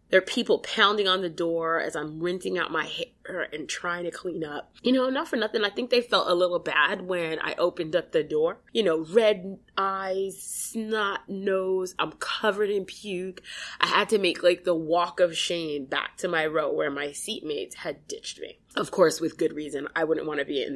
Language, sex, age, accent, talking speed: English, female, 20-39, American, 220 wpm